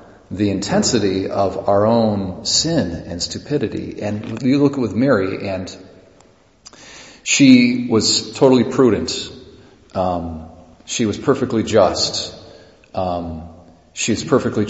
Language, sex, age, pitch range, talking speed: English, male, 40-59, 90-110 Hz, 110 wpm